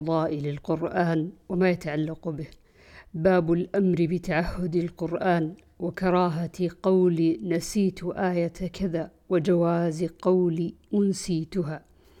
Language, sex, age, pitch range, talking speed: Arabic, female, 50-69, 170-195 Hz, 85 wpm